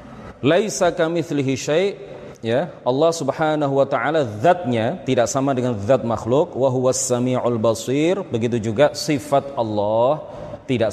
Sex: male